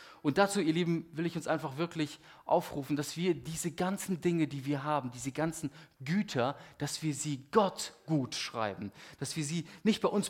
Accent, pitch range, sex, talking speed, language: German, 130-175 Hz, male, 190 wpm, German